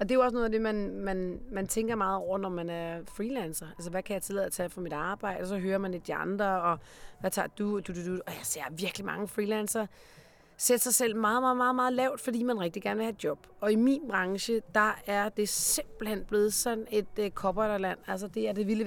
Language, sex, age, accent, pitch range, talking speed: Danish, female, 30-49, native, 180-225 Hz, 260 wpm